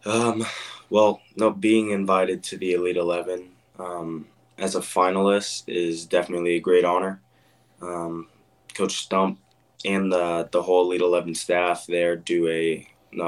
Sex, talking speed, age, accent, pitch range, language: male, 145 wpm, 20-39, American, 85-95 Hz, English